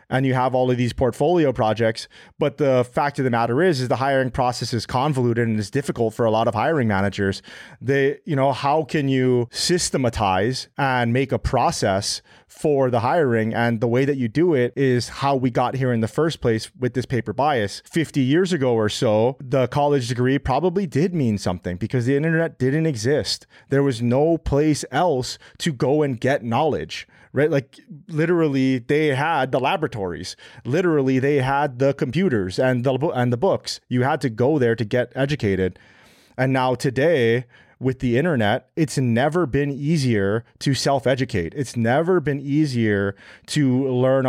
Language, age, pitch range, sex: English, 30-49, 120-145 Hz, male